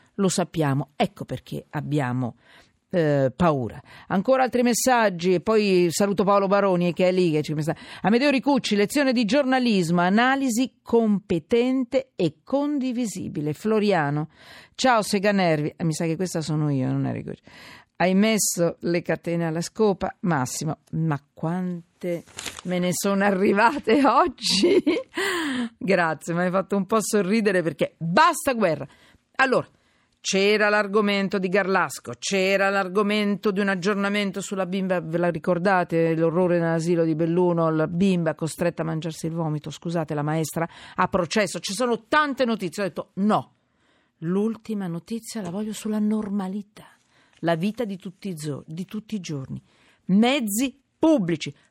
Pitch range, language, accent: 165-215 Hz, Italian, native